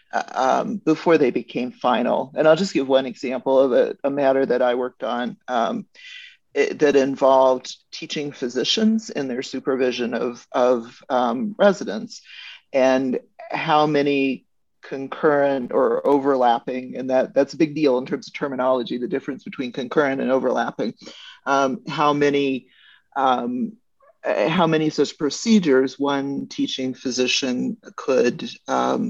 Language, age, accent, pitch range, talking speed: English, 40-59, American, 130-170 Hz, 140 wpm